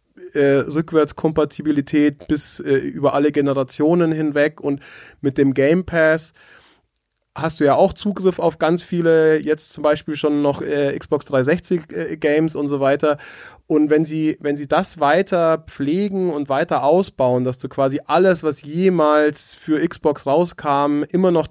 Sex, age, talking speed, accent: male, 30-49, 155 wpm, German